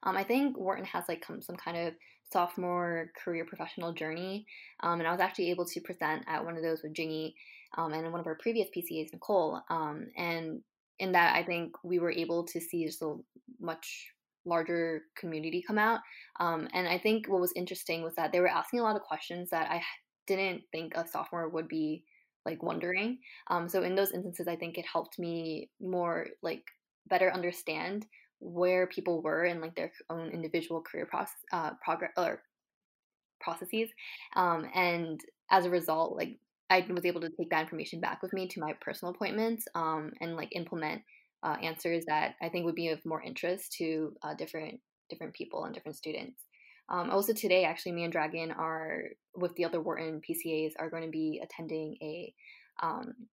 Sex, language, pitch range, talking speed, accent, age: female, English, 165-185 Hz, 190 wpm, American, 10-29